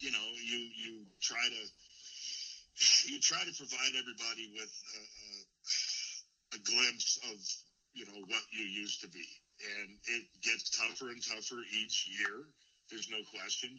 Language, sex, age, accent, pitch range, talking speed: English, male, 50-69, American, 105-120 Hz, 150 wpm